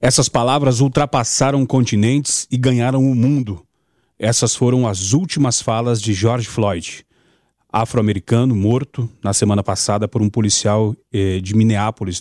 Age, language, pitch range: 30-49, Portuguese, 105-125 Hz